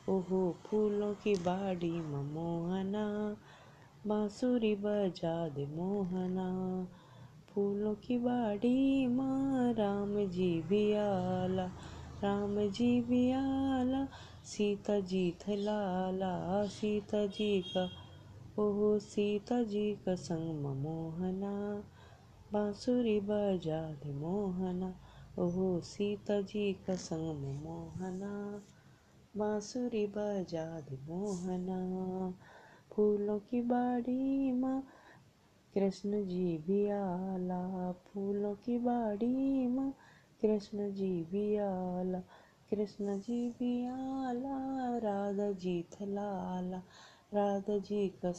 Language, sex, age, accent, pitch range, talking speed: Hindi, female, 20-39, native, 180-210 Hz, 90 wpm